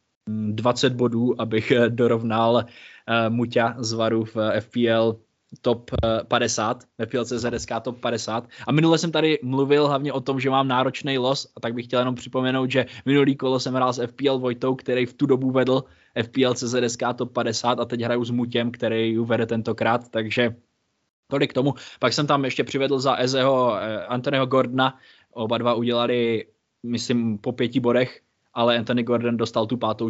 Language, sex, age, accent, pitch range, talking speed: Czech, male, 20-39, native, 115-125 Hz, 165 wpm